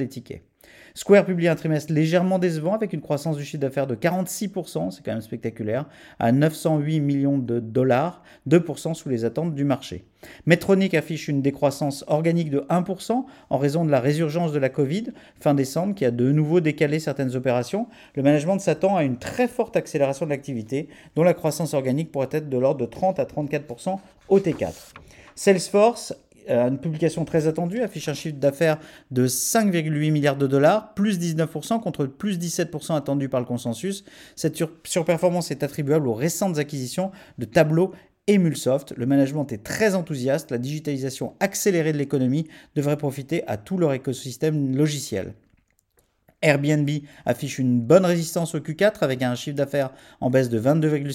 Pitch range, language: 135-170 Hz, French